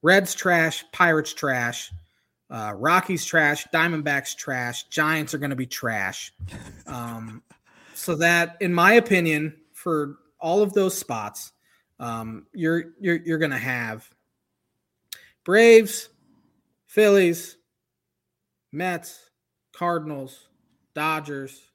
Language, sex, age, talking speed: English, male, 30-49, 100 wpm